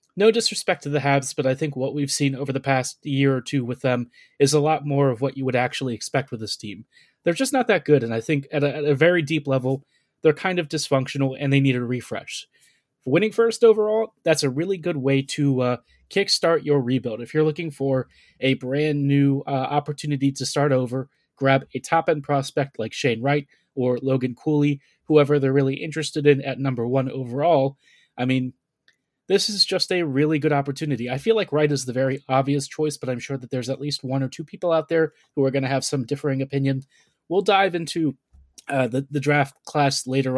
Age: 30-49